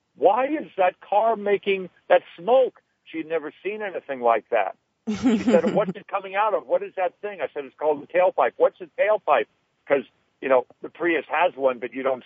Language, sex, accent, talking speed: English, male, American, 215 wpm